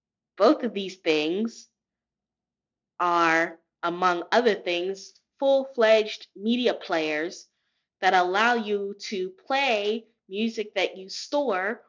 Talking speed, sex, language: 100 wpm, female, English